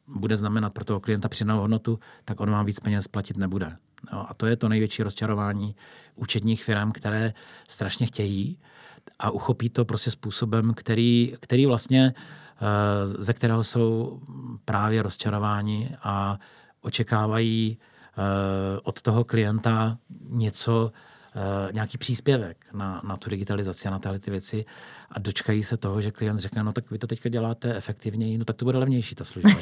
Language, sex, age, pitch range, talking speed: Slovak, male, 40-59, 105-120 Hz, 155 wpm